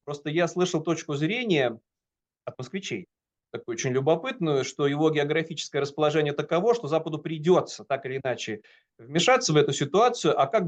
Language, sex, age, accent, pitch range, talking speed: Russian, male, 30-49, native, 135-175 Hz, 150 wpm